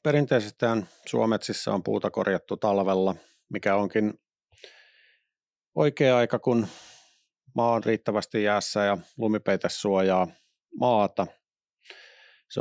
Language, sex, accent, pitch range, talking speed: Finnish, male, native, 100-125 Hz, 95 wpm